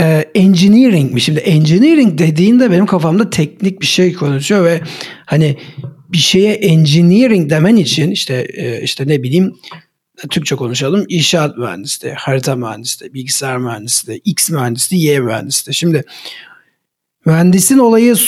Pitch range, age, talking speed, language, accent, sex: 130-185 Hz, 60-79, 120 wpm, Turkish, native, male